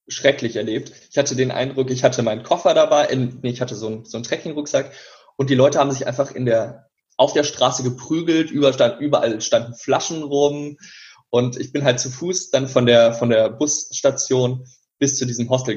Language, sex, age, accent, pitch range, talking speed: German, male, 20-39, German, 120-145 Hz, 195 wpm